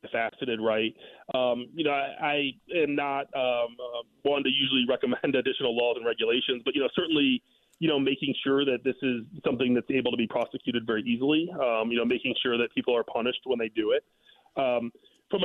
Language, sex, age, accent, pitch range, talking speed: English, male, 30-49, American, 125-190 Hz, 205 wpm